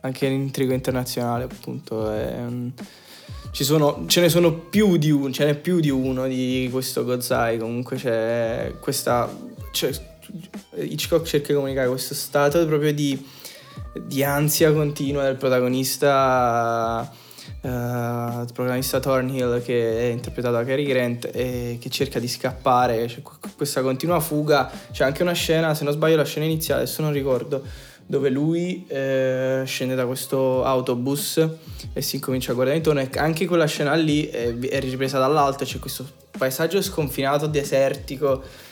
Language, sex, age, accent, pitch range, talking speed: Italian, male, 20-39, native, 120-145 Hz, 150 wpm